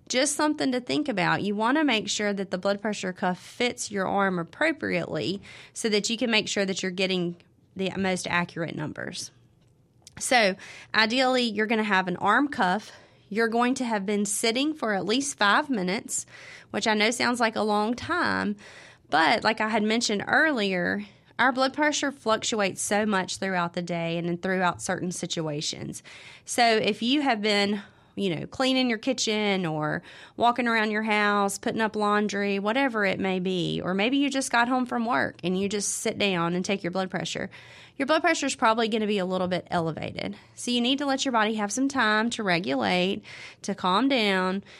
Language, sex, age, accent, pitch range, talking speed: English, female, 30-49, American, 185-235 Hz, 195 wpm